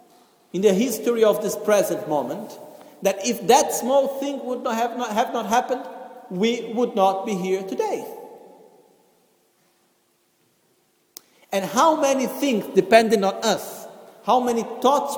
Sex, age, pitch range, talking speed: male, 50-69, 205-260 Hz, 135 wpm